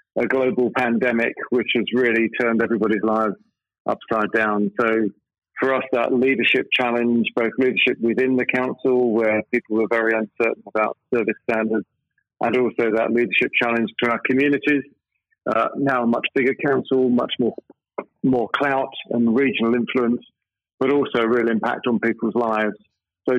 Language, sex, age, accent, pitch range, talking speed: English, male, 50-69, British, 115-135 Hz, 155 wpm